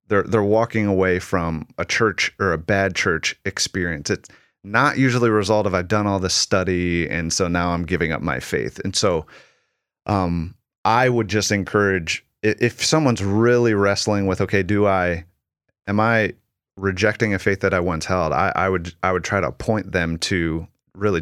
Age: 30-49